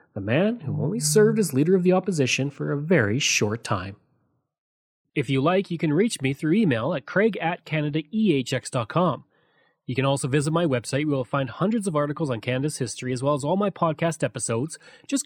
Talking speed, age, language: 200 wpm, 30-49, English